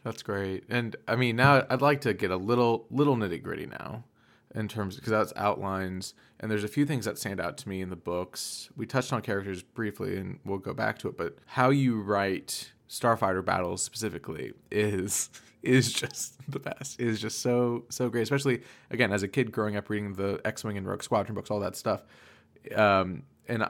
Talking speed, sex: 210 wpm, male